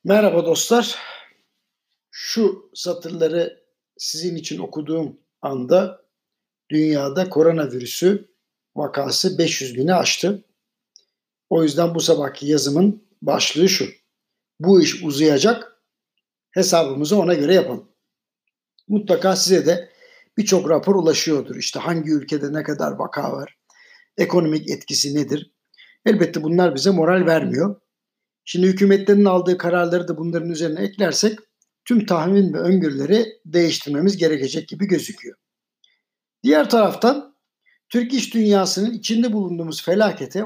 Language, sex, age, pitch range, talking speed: Turkish, male, 60-79, 160-210 Hz, 110 wpm